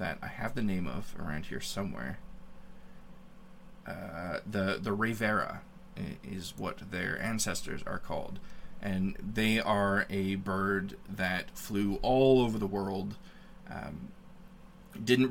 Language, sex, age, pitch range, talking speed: English, male, 20-39, 95-125 Hz, 125 wpm